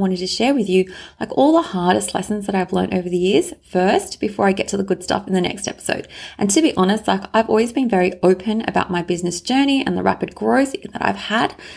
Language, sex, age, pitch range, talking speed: English, female, 30-49, 185-225 Hz, 250 wpm